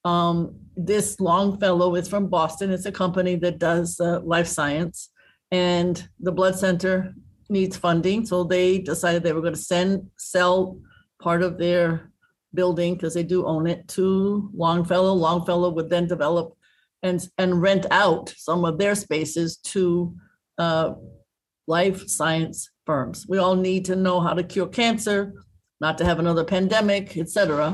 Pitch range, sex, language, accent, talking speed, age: 170-190 Hz, female, English, American, 155 wpm, 50-69